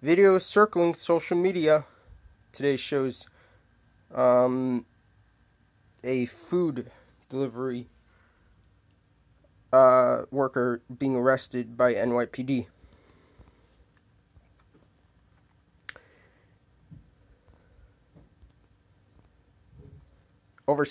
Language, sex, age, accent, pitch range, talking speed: English, male, 20-39, American, 95-130 Hz, 50 wpm